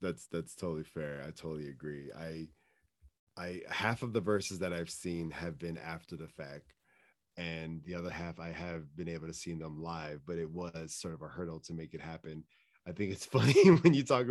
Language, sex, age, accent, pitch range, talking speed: English, male, 30-49, American, 80-95 Hz, 215 wpm